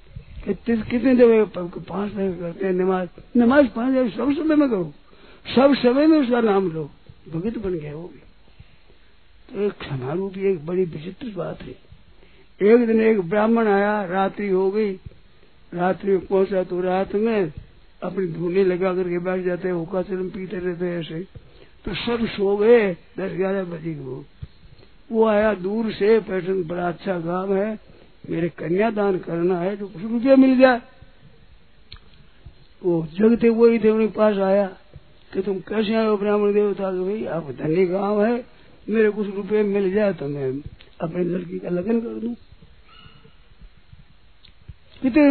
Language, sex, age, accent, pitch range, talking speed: Hindi, male, 60-79, native, 180-220 Hz, 160 wpm